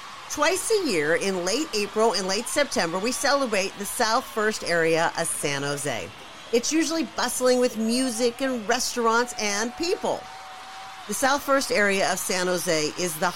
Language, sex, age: English, female, 50-69